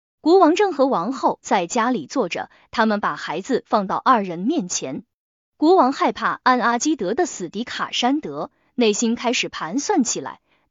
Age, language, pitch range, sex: 20-39, Chinese, 220-310 Hz, female